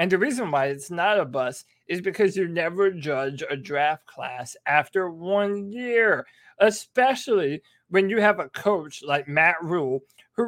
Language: English